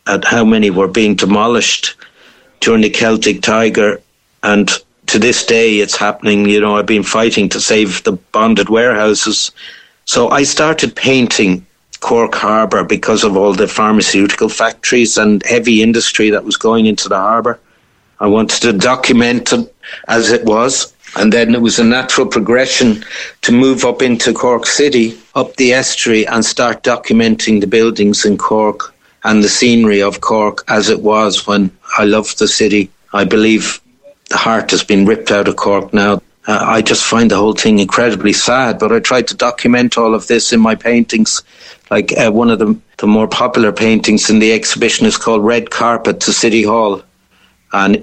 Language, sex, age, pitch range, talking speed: English, male, 60-79, 105-120 Hz, 175 wpm